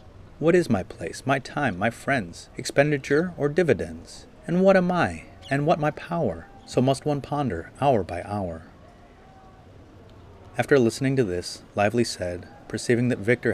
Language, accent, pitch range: English, American, 95-135 Hz